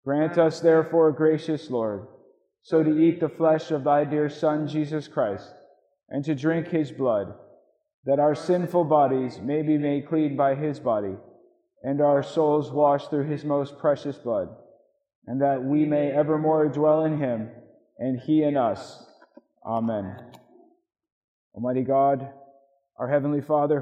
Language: English